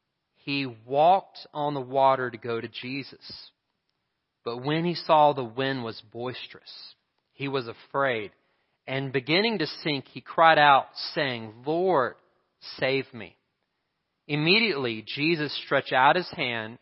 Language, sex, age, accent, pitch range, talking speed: English, male, 40-59, American, 125-160 Hz, 130 wpm